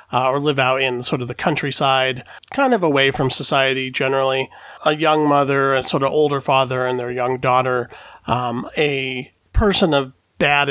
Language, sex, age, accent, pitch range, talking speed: English, male, 40-59, American, 125-150 Hz, 180 wpm